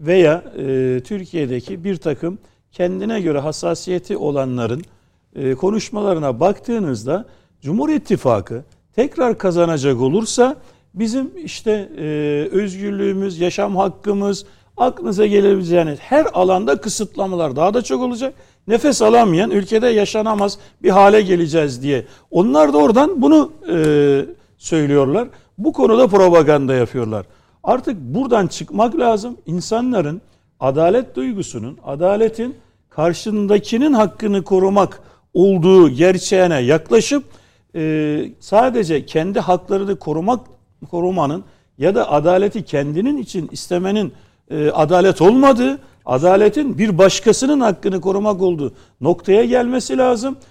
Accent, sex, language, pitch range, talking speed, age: native, male, Turkish, 155-220 Hz, 105 wpm, 60-79